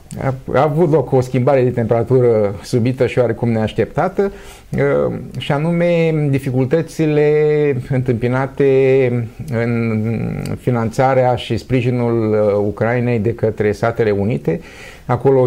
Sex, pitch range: male, 110-140 Hz